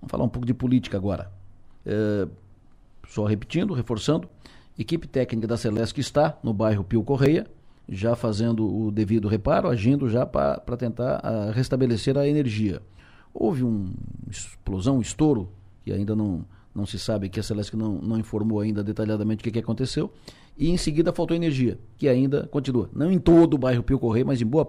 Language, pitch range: Portuguese, 105-130 Hz